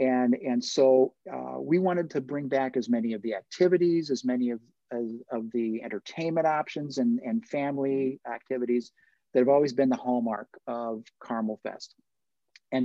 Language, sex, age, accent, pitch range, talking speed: English, male, 50-69, American, 120-140 Hz, 170 wpm